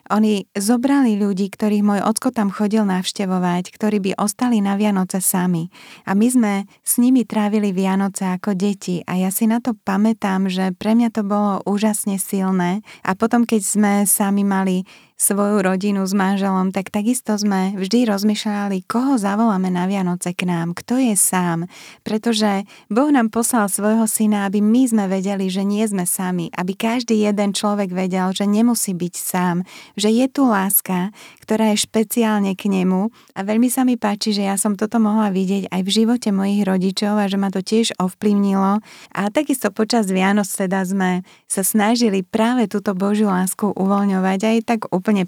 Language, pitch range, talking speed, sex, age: Slovak, 190-220 Hz, 175 wpm, female, 20-39